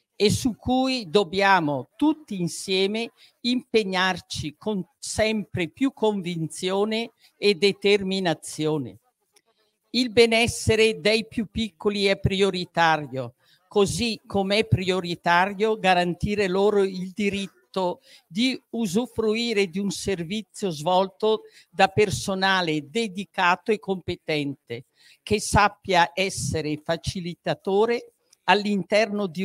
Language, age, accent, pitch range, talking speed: Italian, 50-69, native, 175-220 Hz, 90 wpm